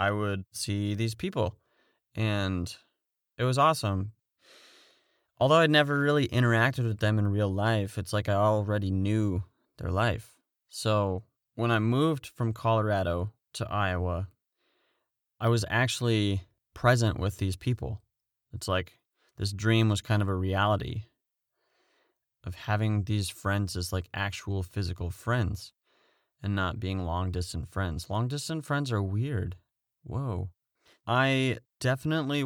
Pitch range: 95-120 Hz